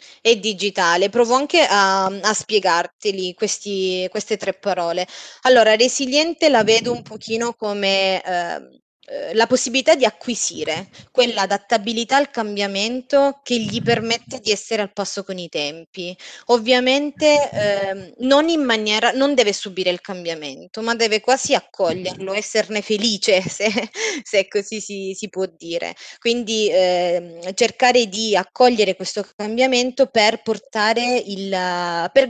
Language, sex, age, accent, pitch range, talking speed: Italian, female, 20-39, native, 190-245 Hz, 125 wpm